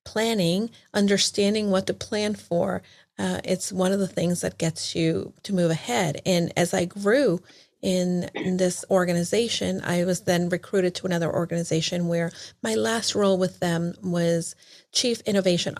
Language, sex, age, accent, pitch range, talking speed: English, female, 40-59, American, 175-210 Hz, 160 wpm